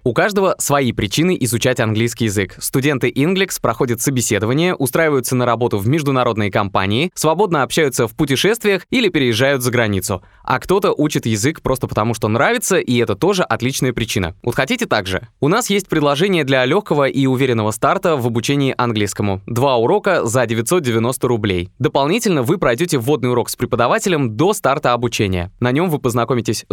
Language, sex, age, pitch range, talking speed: Russian, male, 20-39, 115-150 Hz, 160 wpm